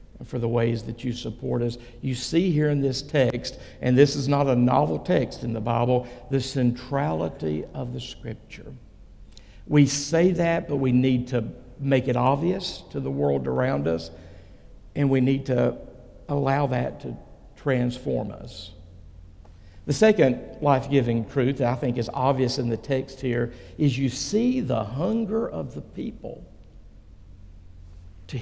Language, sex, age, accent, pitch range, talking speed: English, male, 60-79, American, 120-145 Hz, 155 wpm